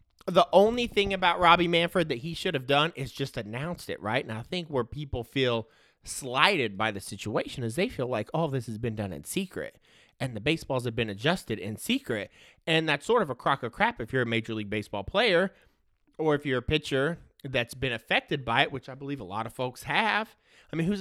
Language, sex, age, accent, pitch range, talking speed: English, male, 30-49, American, 125-180 Hz, 235 wpm